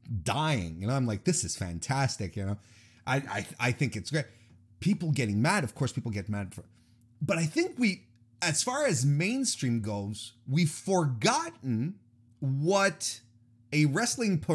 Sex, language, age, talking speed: male, English, 30-49, 160 wpm